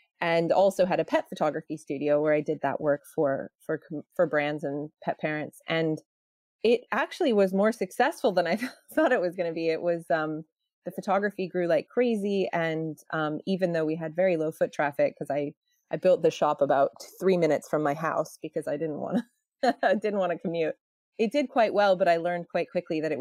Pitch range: 155-195 Hz